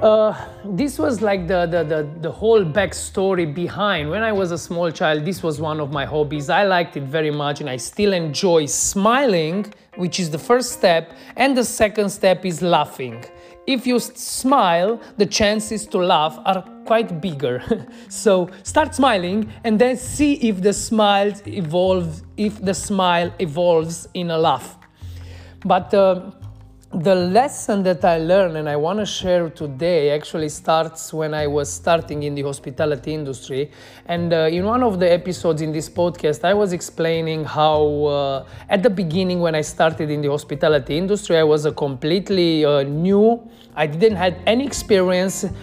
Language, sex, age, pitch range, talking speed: English, male, 30-49, 155-205 Hz, 170 wpm